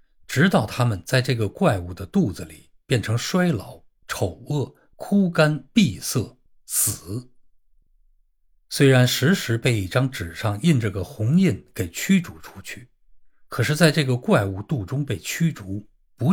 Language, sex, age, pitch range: Chinese, male, 50-69, 95-150 Hz